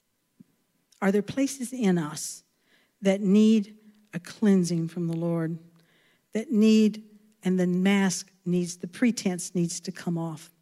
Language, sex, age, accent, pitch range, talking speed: English, female, 60-79, American, 185-245 Hz, 135 wpm